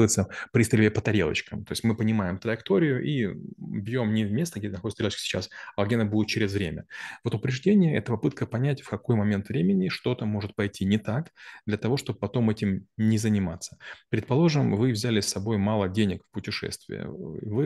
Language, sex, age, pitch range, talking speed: Russian, male, 20-39, 105-120 Hz, 185 wpm